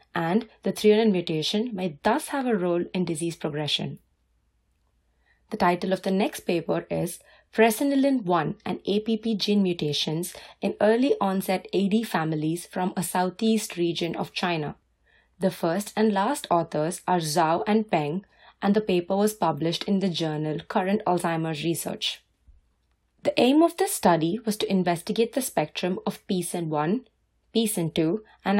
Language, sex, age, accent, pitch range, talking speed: English, female, 20-39, Indian, 165-215 Hz, 145 wpm